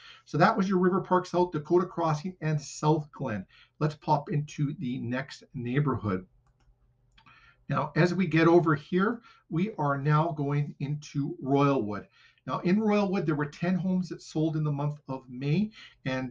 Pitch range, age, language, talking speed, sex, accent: 140-175 Hz, 50-69, English, 165 wpm, male, American